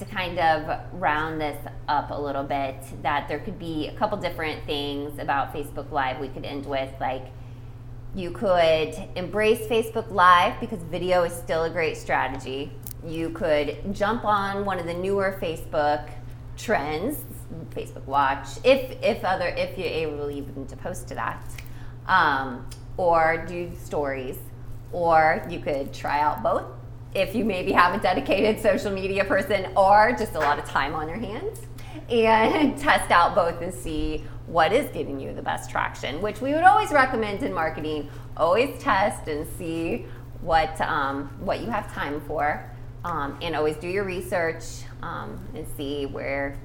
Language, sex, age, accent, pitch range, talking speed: English, female, 20-39, American, 125-175 Hz, 165 wpm